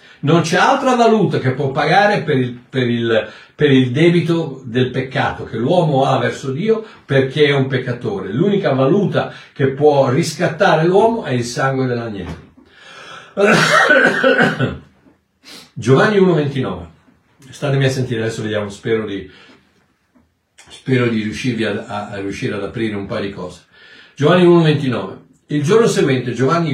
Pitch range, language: 115-165 Hz, Italian